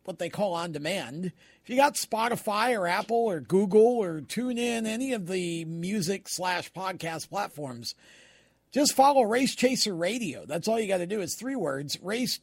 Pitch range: 165-215 Hz